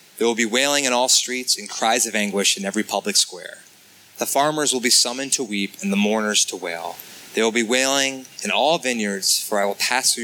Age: 20-39